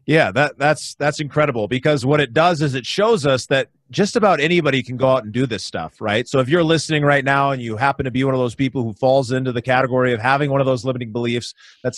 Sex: male